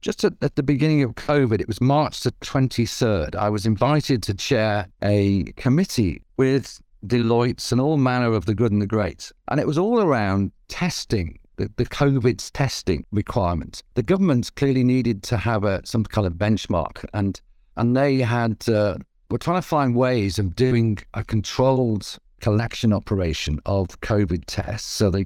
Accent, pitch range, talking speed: British, 100-130 Hz, 175 wpm